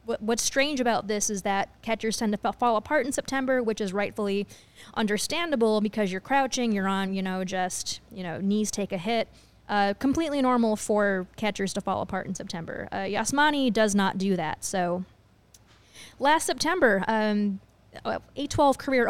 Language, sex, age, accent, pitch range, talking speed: English, female, 20-39, American, 195-245 Hz, 165 wpm